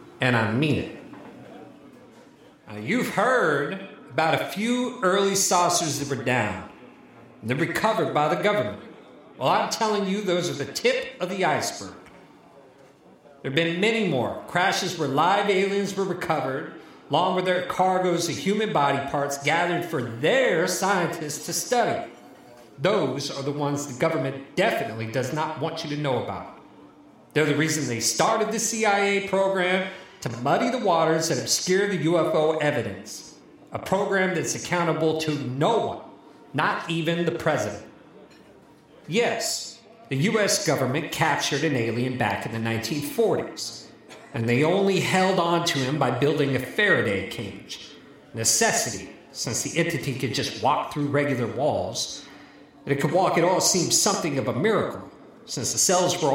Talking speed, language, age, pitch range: 155 wpm, English, 40-59, 140-185 Hz